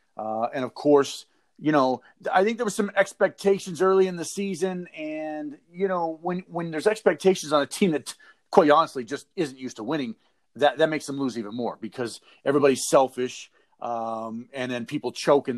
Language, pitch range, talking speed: English, 130-180 Hz, 195 wpm